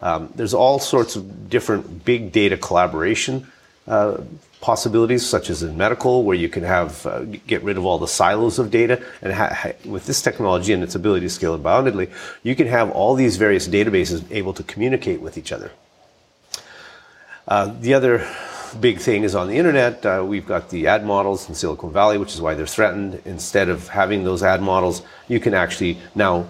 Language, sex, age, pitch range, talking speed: English, male, 40-59, 90-115 Hz, 195 wpm